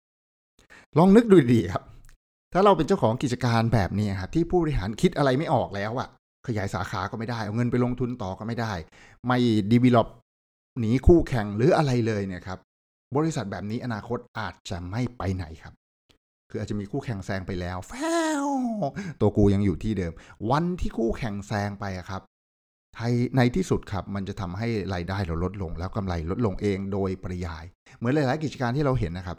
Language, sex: English, male